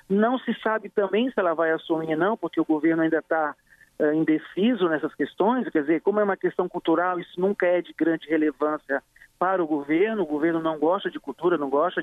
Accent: Brazilian